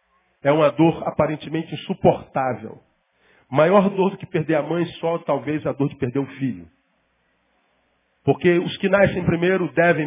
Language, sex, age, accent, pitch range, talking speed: Portuguese, male, 40-59, Brazilian, 165-235 Hz, 155 wpm